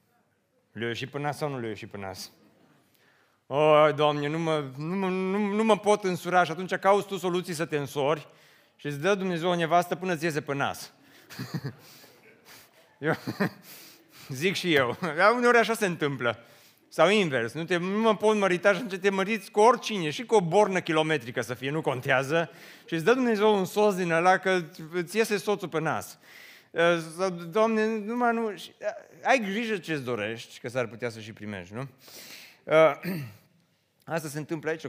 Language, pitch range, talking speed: Romanian, 110-180 Hz, 170 wpm